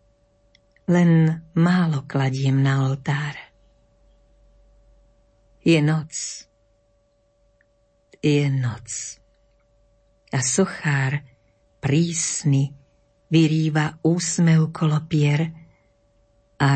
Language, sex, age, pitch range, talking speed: Slovak, female, 50-69, 115-160 Hz, 55 wpm